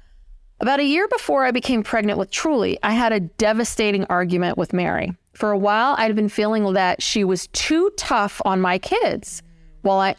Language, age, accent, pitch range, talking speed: English, 30-49, American, 185-225 Hz, 190 wpm